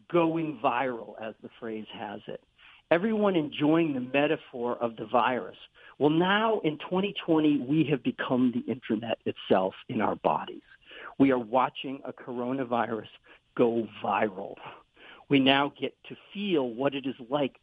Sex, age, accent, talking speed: male, 50-69, American, 145 wpm